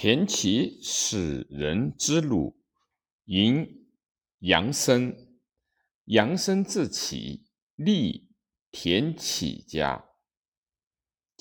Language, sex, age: Chinese, male, 50-69